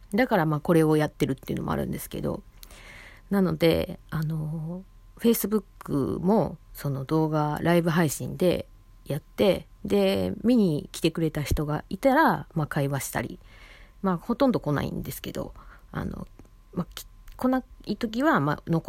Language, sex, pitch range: Japanese, female, 140-190 Hz